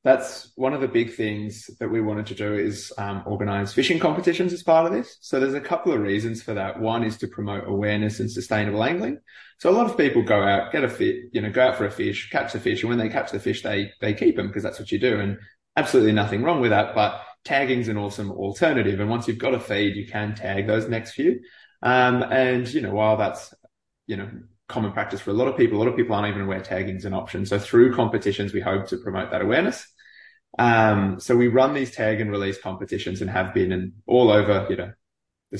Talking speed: 245 wpm